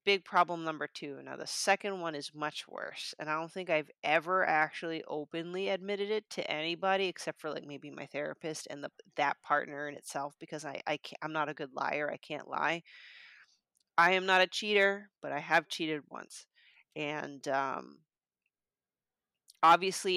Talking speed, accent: 180 wpm, American